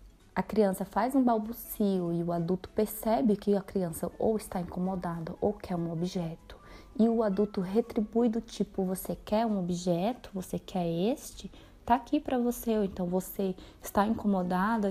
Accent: Brazilian